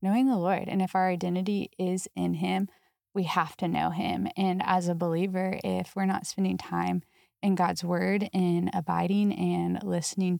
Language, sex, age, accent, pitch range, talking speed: English, female, 20-39, American, 175-200 Hz, 180 wpm